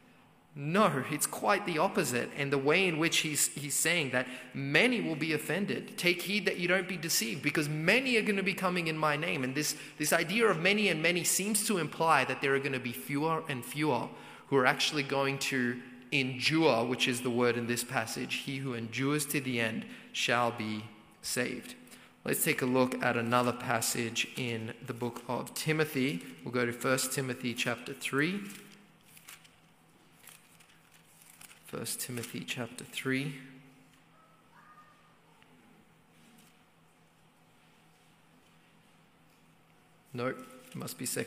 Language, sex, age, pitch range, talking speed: English, male, 30-49, 125-155 Hz, 140 wpm